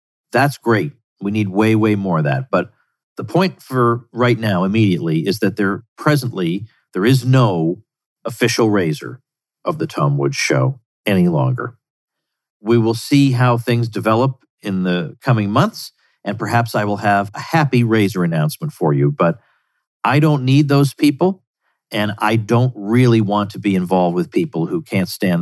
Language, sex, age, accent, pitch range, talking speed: English, male, 50-69, American, 105-130 Hz, 170 wpm